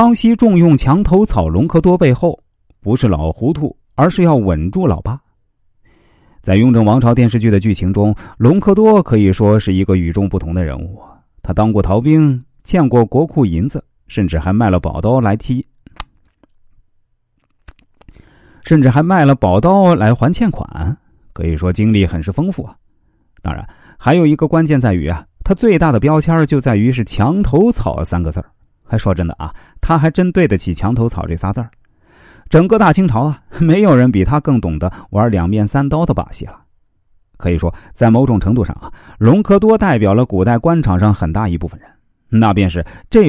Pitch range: 90-150 Hz